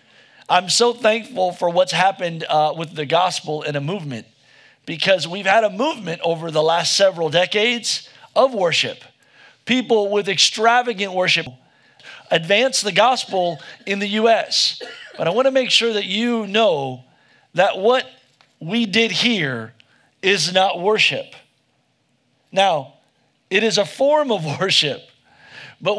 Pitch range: 170-230 Hz